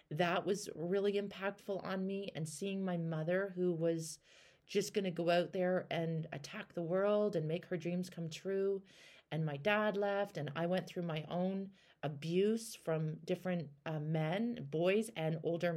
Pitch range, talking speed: 160-200 Hz, 175 wpm